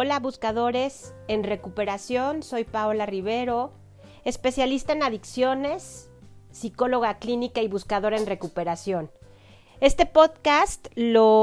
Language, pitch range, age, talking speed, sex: Spanish, 215-255 Hz, 40-59, 100 wpm, female